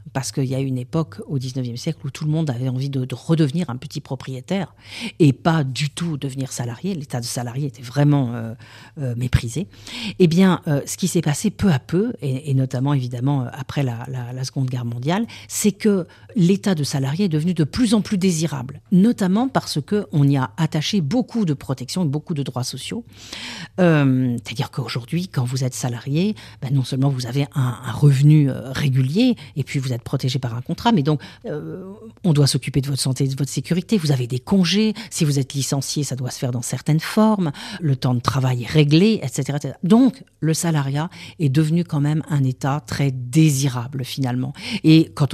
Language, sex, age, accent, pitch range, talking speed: French, female, 50-69, French, 130-165 Hz, 205 wpm